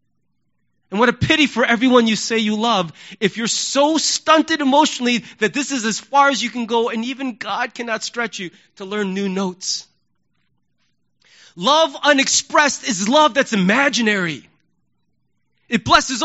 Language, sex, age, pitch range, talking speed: English, male, 30-49, 190-260 Hz, 155 wpm